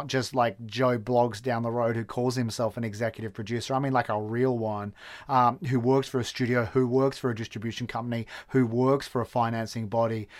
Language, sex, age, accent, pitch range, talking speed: English, male, 30-49, Australian, 125-160 Hz, 215 wpm